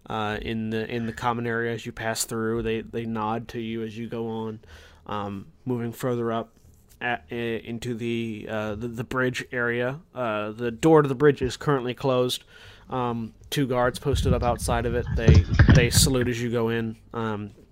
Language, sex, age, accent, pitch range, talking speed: English, male, 20-39, American, 115-135 Hz, 195 wpm